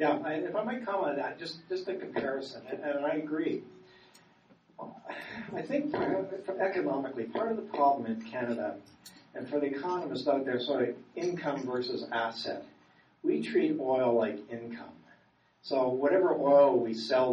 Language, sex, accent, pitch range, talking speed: English, male, American, 115-185 Hz, 155 wpm